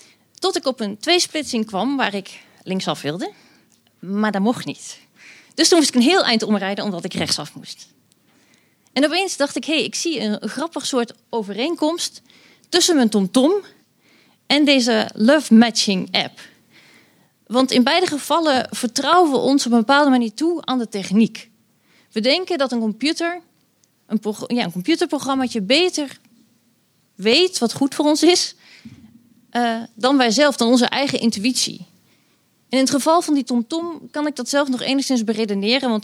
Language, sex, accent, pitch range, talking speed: Dutch, female, Dutch, 215-290 Hz, 165 wpm